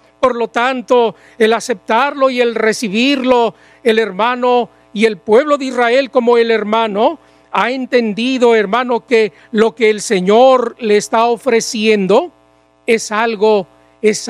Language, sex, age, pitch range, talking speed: Spanish, male, 40-59, 165-230 Hz, 135 wpm